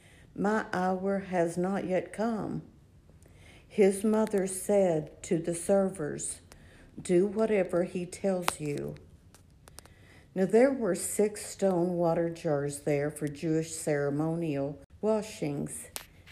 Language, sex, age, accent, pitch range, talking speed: English, female, 60-79, American, 145-195 Hz, 105 wpm